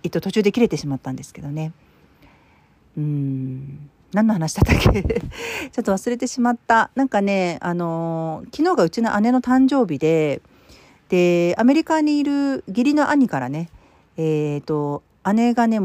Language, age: Japanese, 40-59